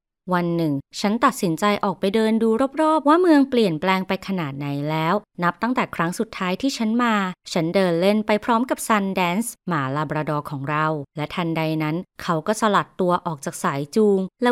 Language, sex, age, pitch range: Thai, female, 20-39, 160-225 Hz